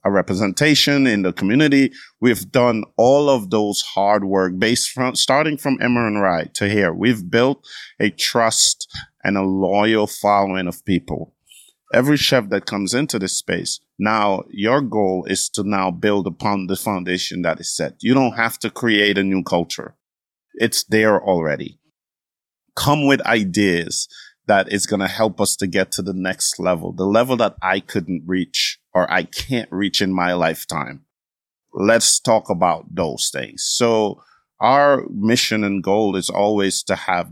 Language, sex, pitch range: English, male, 95-125 Hz